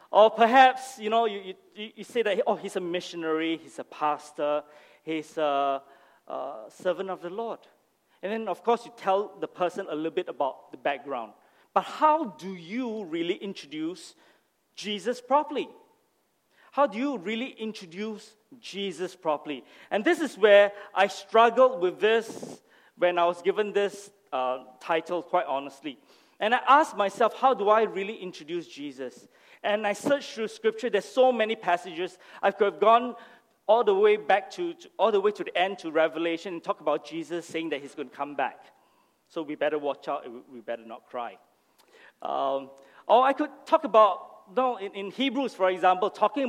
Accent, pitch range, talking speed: Malaysian, 170-240 Hz, 180 wpm